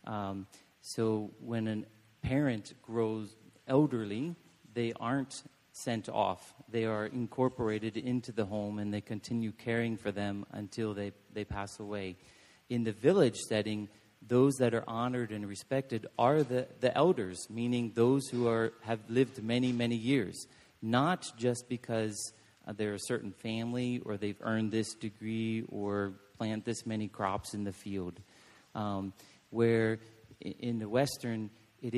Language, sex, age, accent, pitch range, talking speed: English, male, 40-59, American, 105-120 Hz, 145 wpm